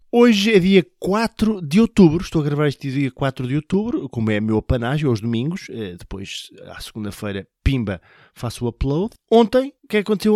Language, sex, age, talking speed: Portuguese, male, 20-39, 190 wpm